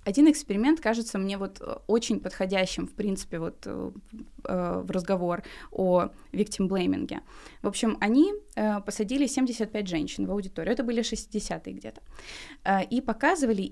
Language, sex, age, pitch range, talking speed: Russian, female, 20-39, 195-270 Hz, 125 wpm